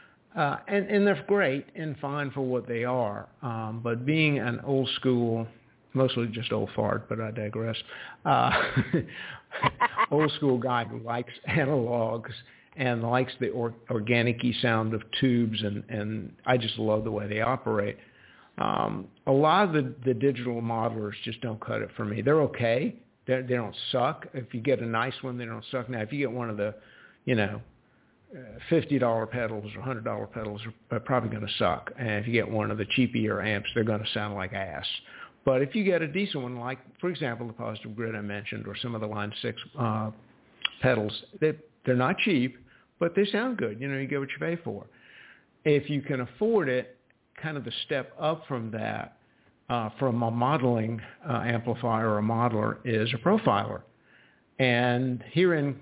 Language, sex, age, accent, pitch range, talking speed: English, male, 50-69, American, 110-135 Hz, 190 wpm